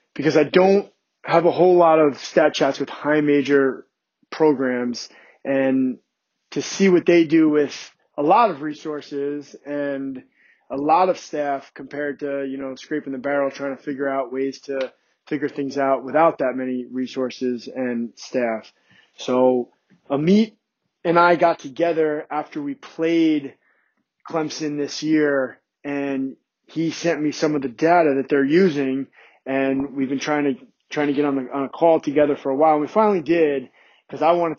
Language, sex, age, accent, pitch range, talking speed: English, male, 20-39, American, 140-165 Hz, 170 wpm